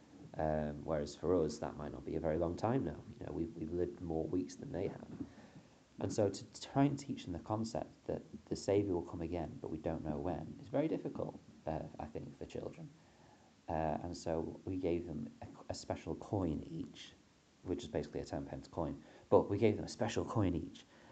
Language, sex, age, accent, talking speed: English, male, 30-49, British, 220 wpm